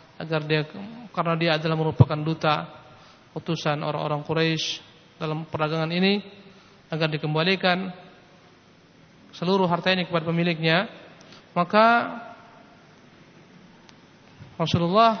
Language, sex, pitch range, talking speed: Malay, male, 160-185 Hz, 85 wpm